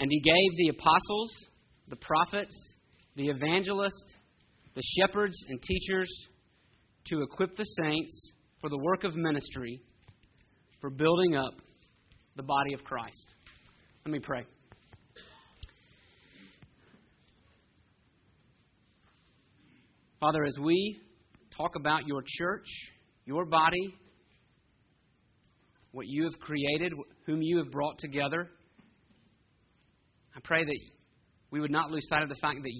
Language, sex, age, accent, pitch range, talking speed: English, male, 40-59, American, 130-165 Hz, 110 wpm